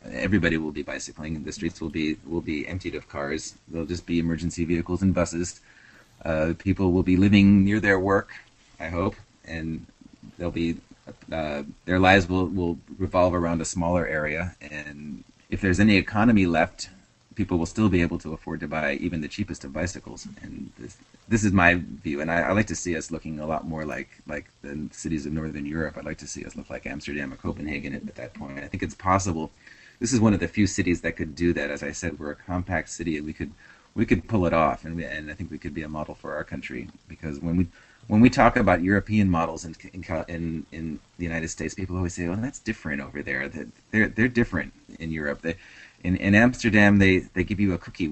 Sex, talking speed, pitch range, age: male, 230 wpm, 80-95 Hz, 30-49